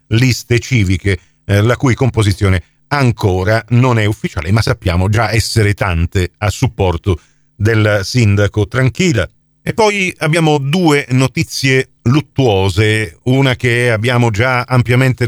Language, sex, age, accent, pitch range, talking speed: Italian, male, 40-59, native, 105-125 Hz, 120 wpm